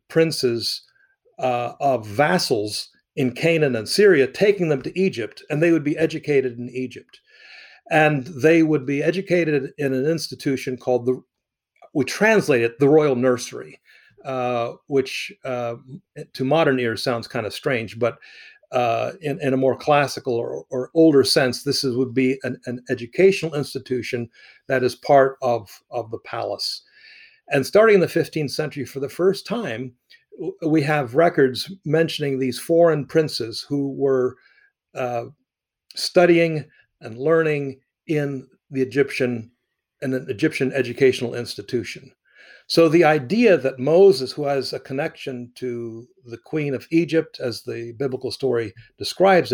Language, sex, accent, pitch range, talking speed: English, male, American, 125-165 Hz, 145 wpm